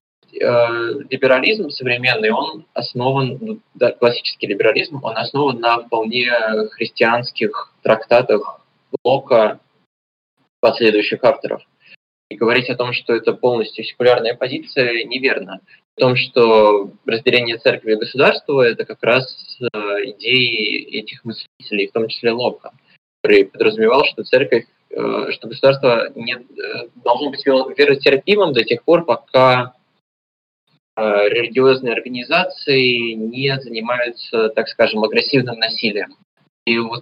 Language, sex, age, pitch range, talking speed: Russian, male, 20-39, 110-140 Hz, 110 wpm